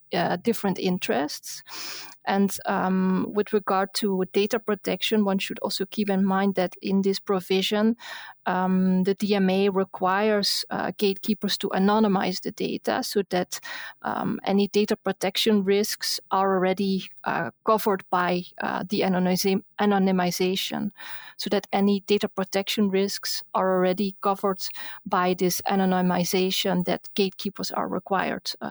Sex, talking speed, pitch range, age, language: female, 130 wpm, 190-210 Hz, 30-49, English